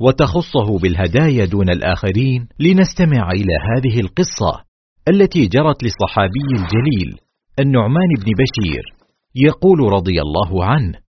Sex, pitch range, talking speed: male, 90-130 Hz, 100 wpm